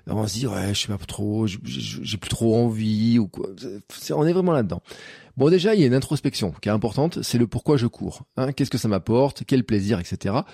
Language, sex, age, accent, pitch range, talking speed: French, male, 40-59, French, 100-140 Hz, 270 wpm